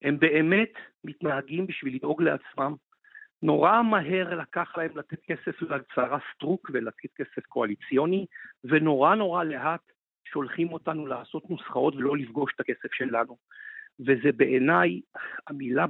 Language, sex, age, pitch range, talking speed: Hebrew, male, 50-69, 140-185 Hz, 120 wpm